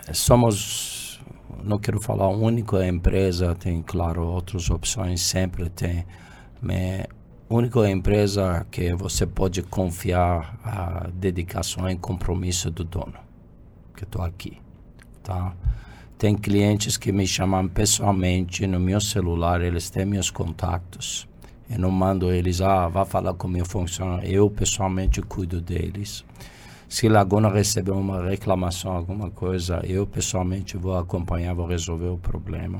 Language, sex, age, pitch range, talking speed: Portuguese, male, 50-69, 90-105 Hz, 135 wpm